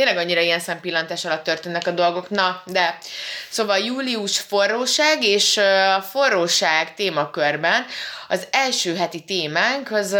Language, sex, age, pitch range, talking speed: Hungarian, female, 20-39, 155-210 Hz, 130 wpm